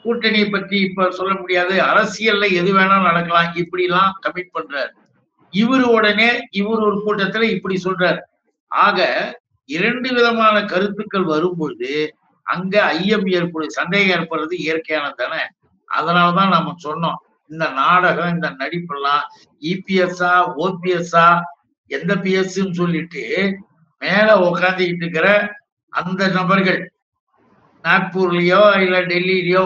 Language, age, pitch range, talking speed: Tamil, 60-79, 170-200 Hz, 90 wpm